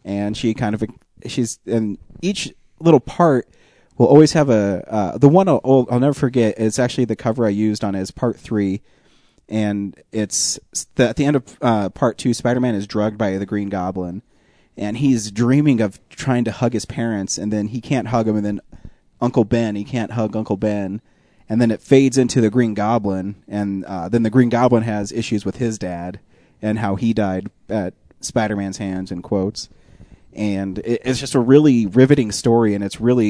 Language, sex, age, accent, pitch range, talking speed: English, male, 30-49, American, 100-125 Hz, 200 wpm